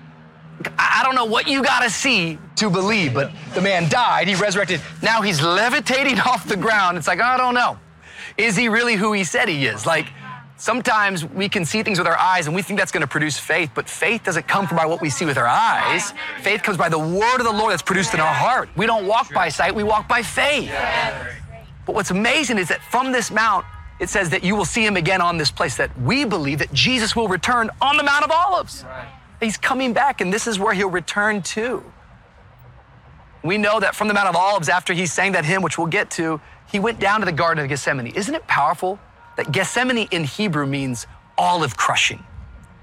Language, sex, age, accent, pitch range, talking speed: English, male, 30-49, American, 155-220 Hz, 225 wpm